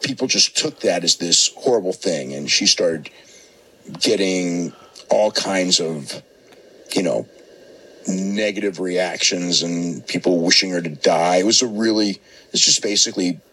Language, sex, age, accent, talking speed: English, male, 50-69, American, 140 wpm